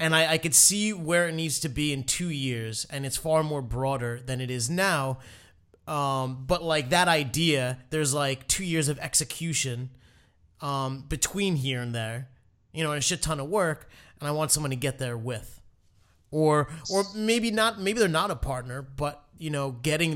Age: 30-49